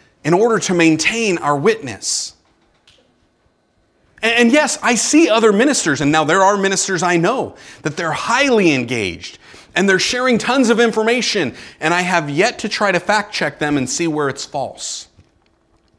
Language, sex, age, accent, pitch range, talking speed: English, male, 30-49, American, 150-240 Hz, 170 wpm